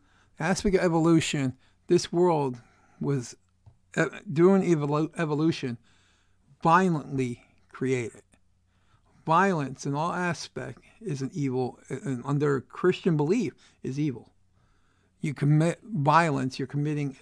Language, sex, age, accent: English, male, 50-69, American